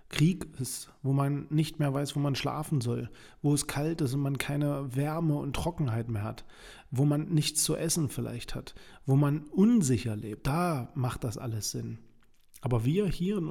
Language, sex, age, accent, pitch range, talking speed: German, male, 40-59, German, 120-145 Hz, 190 wpm